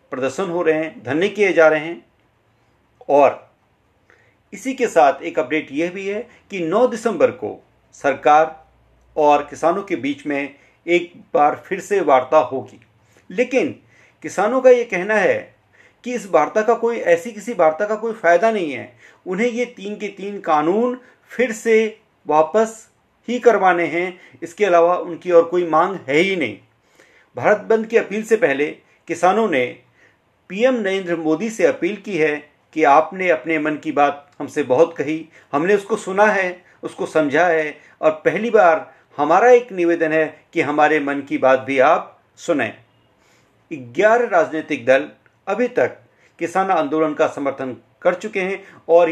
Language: Hindi